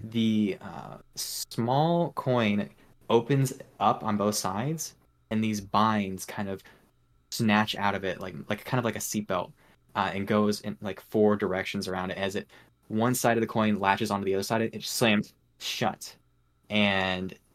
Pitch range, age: 95-110 Hz, 20-39